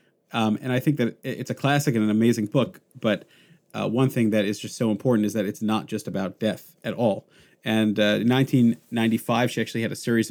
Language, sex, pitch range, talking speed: English, male, 105-130 Hz, 225 wpm